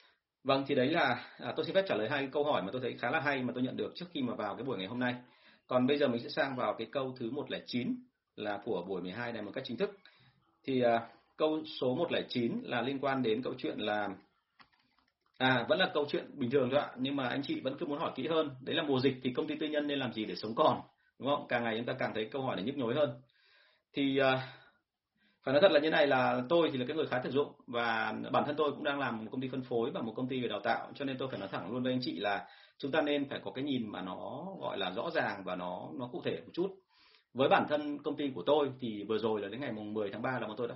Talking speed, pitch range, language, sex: 295 wpm, 115-145 Hz, Vietnamese, male